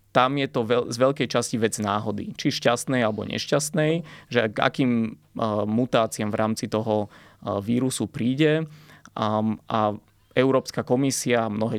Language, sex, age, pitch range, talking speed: Slovak, male, 20-39, 110-125 Hz, 125 wpm